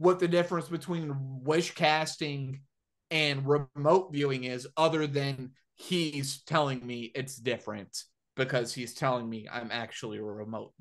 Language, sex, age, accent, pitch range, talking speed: English, male, 30-49, American, 120-165 Hz, 135 wpm